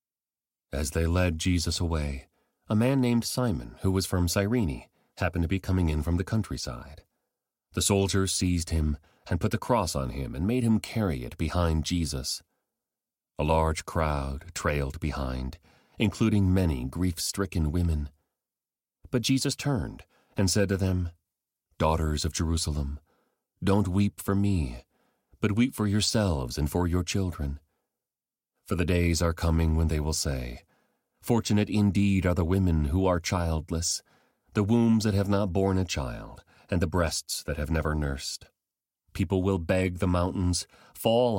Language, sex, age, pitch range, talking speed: English, male, 40-59, 80-100 Hz, 155 wpm